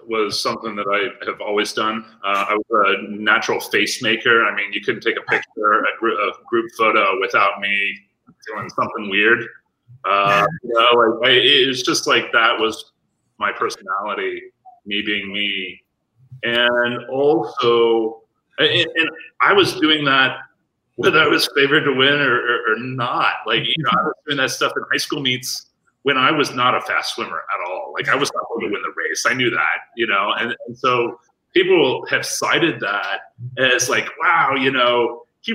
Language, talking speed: English, 190 wpm